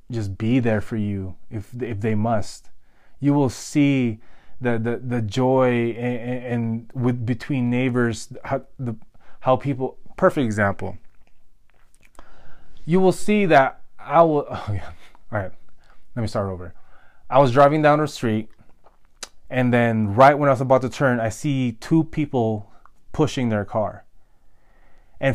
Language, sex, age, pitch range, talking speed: English, male, 20-39, 110-135 Hz, 150 wpm